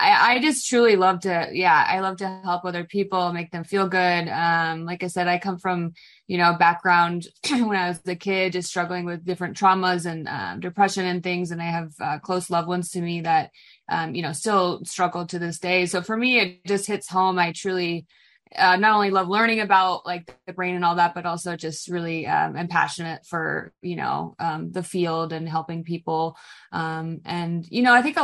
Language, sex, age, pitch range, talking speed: English, female, 20-39, 170-190 Hz, 220 wpm